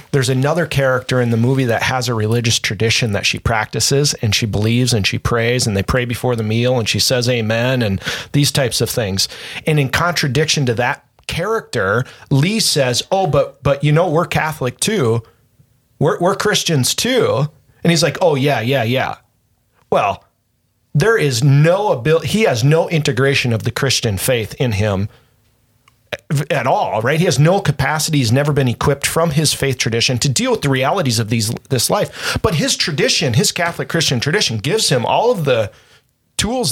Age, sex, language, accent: 40-59, male, English, American